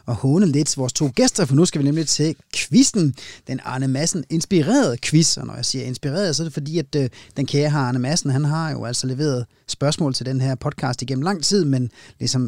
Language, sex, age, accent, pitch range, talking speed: Danish, male, 30-49, native, 125-155 Hz, 230 wpm